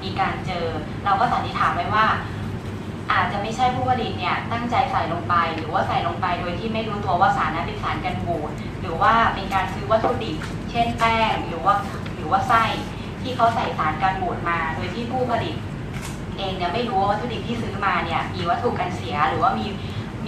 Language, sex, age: Thai, female, 20-39